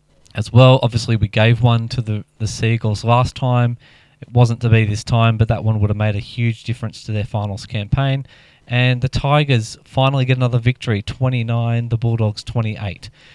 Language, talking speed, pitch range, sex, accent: English, 190 wpm, 110-130 Hz, male, Australian